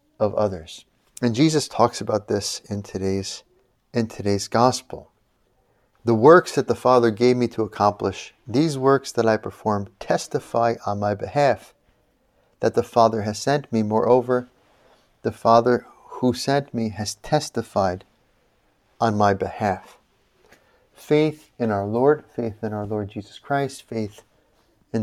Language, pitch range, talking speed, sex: English, 105-125 Hz, 140 wpm, male